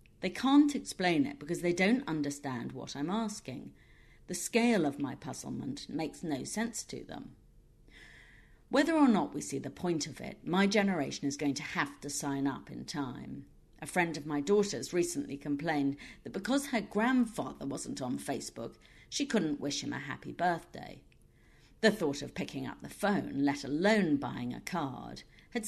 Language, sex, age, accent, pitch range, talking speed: English, female, 50-69, British, 140-200 Hz, 175 wpm